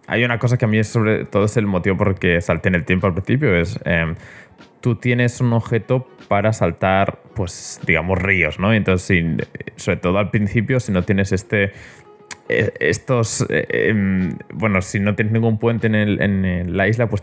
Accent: Spanish